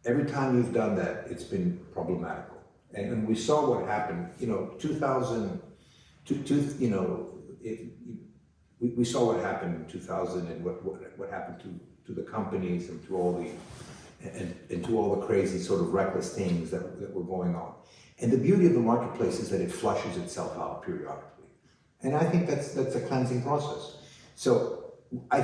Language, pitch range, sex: English, 100-145 Hz, male